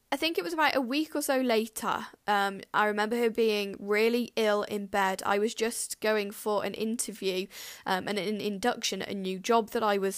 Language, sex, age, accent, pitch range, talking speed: English, female, 10-29, British, 200-245 Hz, 220 wpm